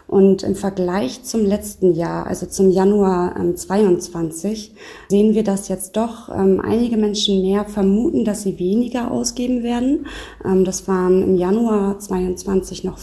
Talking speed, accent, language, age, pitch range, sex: 140 wpm, German, German, 20-39, 180-205 Hz, female